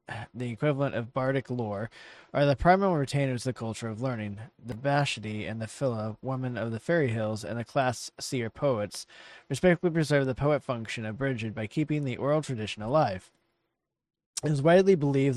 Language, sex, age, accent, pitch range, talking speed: English, male, 20-39, American, 110-140 Hz, 180 wpm